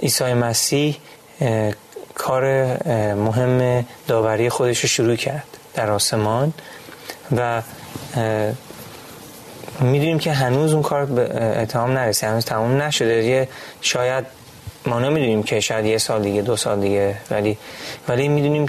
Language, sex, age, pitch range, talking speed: Persian, male, 30-49, 110-140 Hz, 120 wpm